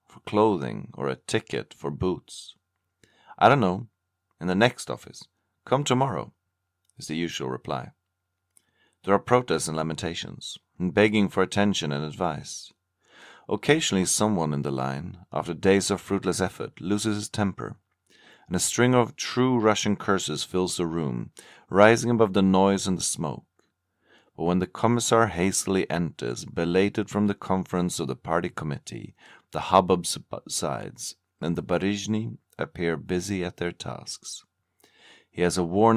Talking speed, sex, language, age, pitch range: 150 wpm, male, English, 40-59, 85-100 Hz